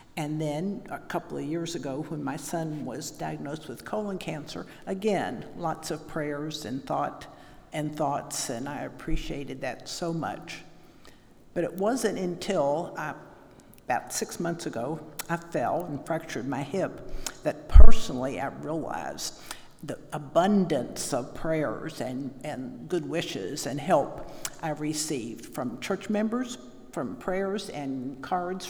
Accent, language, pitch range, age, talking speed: American, English, 150-175 Hz, 60-79, 140 wpm